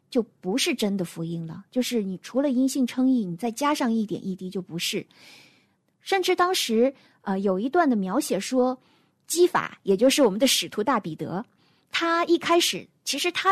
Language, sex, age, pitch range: Chinese, female, 20-39, 195-280 Hz